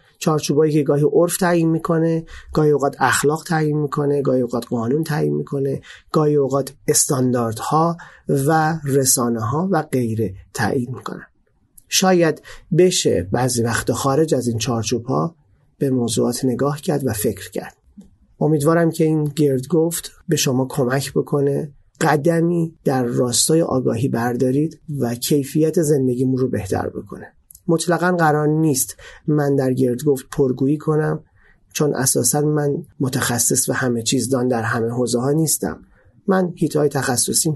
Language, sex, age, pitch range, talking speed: Persian, male, 30-49, 125-155 Hz, 140 wpm